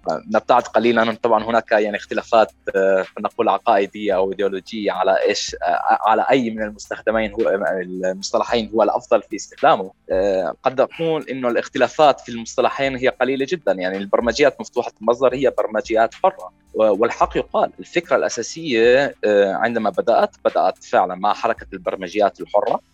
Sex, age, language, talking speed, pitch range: male, 20-39, Arabic, 135 wpm, 100-140 Hz